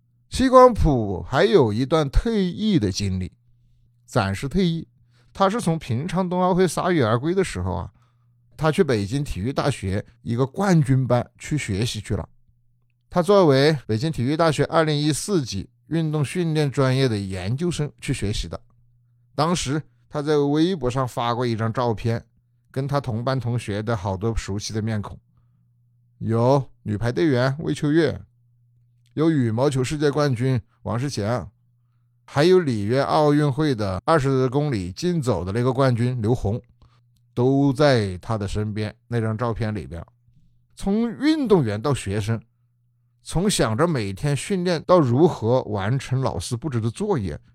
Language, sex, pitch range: Chinese, male, 115-150 Hz